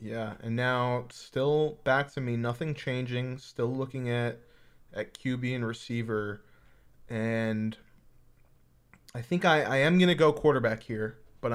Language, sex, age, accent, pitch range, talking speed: English, male, 20-39, American, 110-130 Hz, 145 wpm